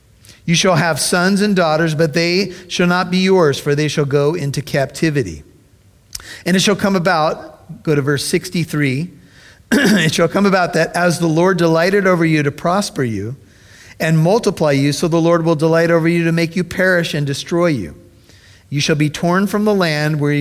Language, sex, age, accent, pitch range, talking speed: English, male, 50-69, American, 130-175 Hz, 195 wpm